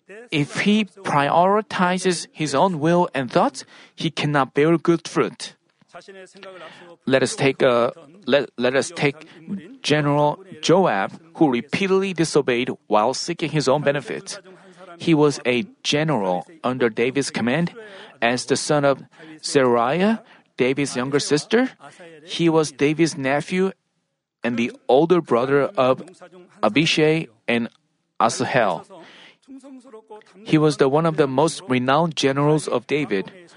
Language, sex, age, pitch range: Korean, male, 40-59, 140-180 Hz